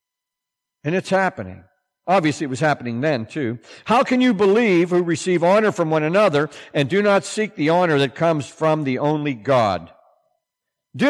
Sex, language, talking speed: male, English, 175 wpm